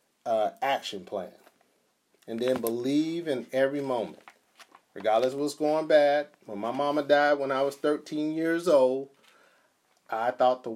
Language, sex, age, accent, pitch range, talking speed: English, male, 40-59, American, 120-150 Hz, 150 wpm